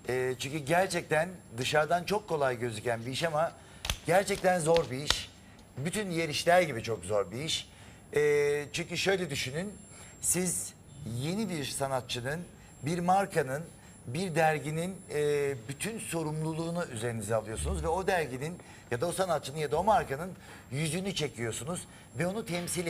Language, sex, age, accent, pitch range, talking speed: Turkish, male, 60-79, native, 125-175 Hz, 135 wpm